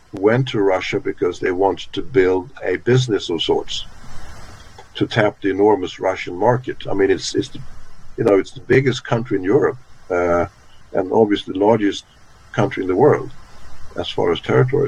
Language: English